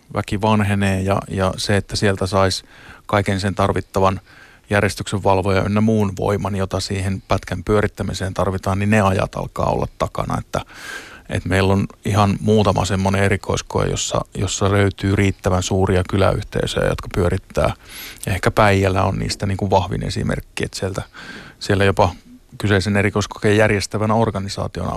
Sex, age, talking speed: male, 20-39, 140 wpm